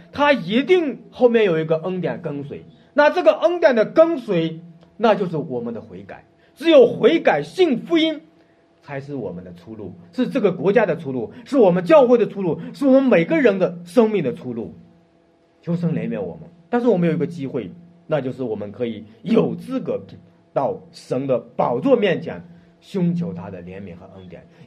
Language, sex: Chinese, male